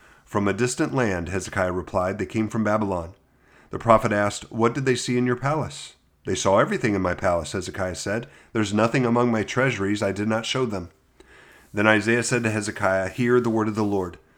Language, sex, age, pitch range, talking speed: English, male, 40-59, 100-115 Hz, 205 wpm